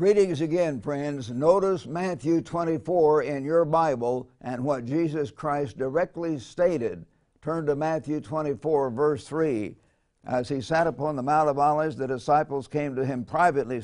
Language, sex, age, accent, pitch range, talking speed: English, male, 60-79, American, 135-165 Hz, 150 wpm